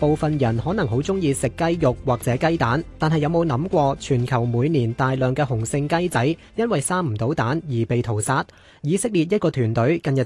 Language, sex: Chinese, male